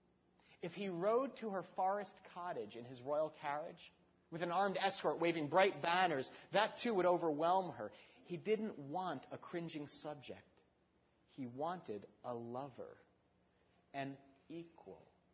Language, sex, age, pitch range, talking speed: Spanish, male, 30-49, 130-180 Hz, 135 wpm